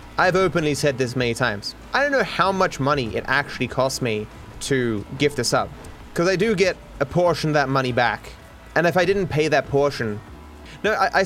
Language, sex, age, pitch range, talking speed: English, male, 20-39, 120-165 Hz, 215 wpm